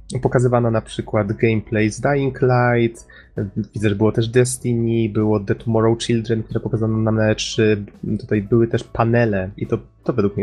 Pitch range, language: 105-120 Hz, Polish